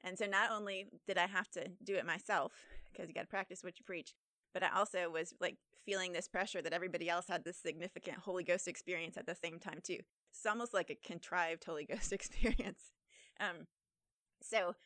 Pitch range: 175-200 Hz